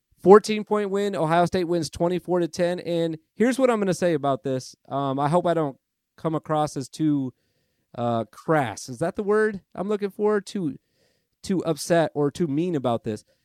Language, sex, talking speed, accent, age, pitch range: English, male, 195 wpm, American, 30-49, 145-195 Hz